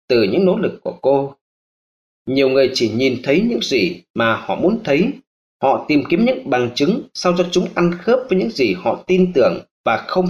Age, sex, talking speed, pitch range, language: 20-39, male, 210 wpm, 145-190 Hz, Vietnamese